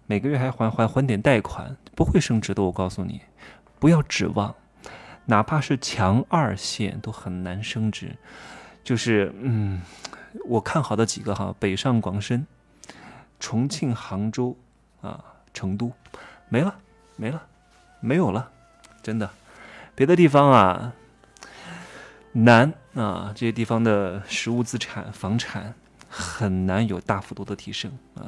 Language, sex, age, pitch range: Chinese, male, 20-39, 100-125 Hz